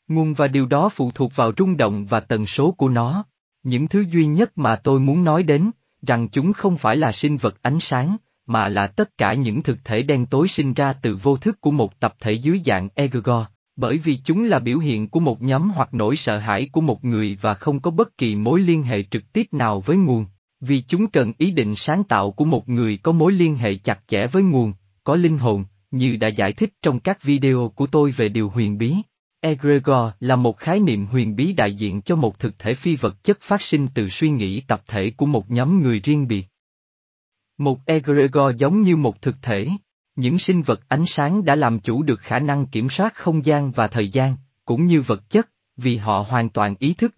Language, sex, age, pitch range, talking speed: Vietnamese, male, 20-39, 110-160 Hz, 230 wpm